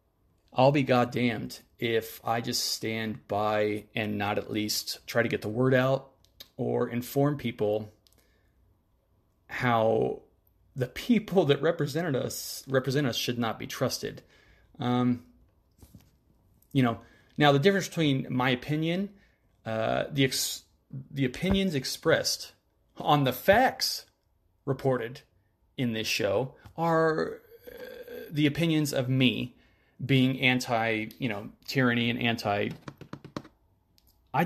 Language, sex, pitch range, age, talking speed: English, male, 110-140 Hz, 30-49, 120 wpm